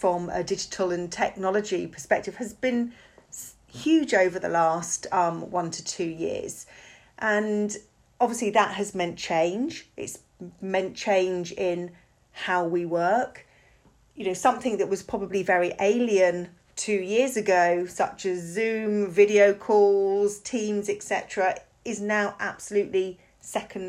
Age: 40-59